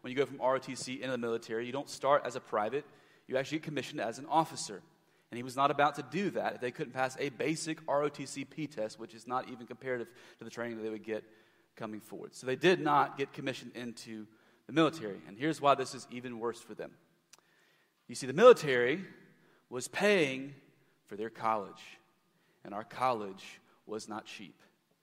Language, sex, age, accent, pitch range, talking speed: English, male, 30-49, American, 115-160 Hz, 200 wpm